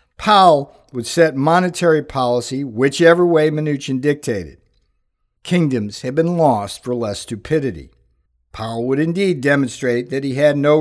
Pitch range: 130-170 Hz